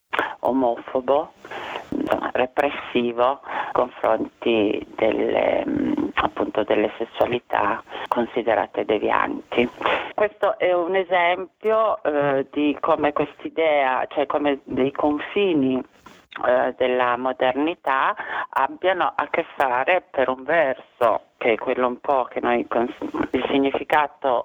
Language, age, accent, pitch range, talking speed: Italian, 40-59, native, 120-155 Hz, 100 wpm